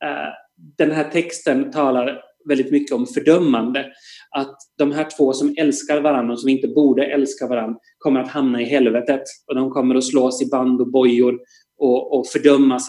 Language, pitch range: Swedish, 125-150 Hz